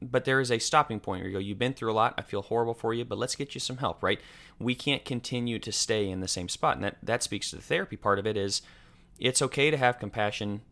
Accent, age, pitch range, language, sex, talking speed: American, 30-49, 100-135 Hz, English, male, 285 wpm